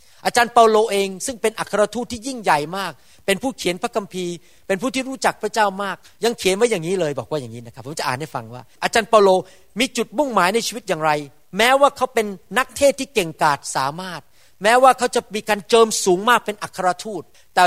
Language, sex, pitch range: Thai, male, 170-250 Hz